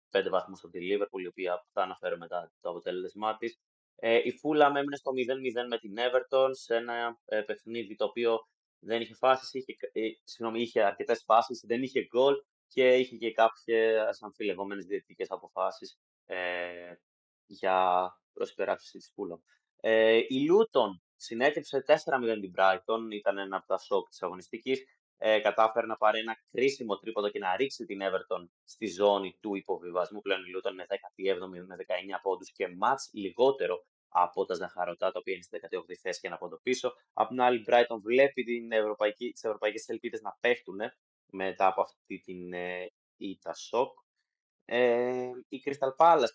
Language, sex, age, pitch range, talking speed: Greek, male, 20-39, 100-130 Hz, 165 wpm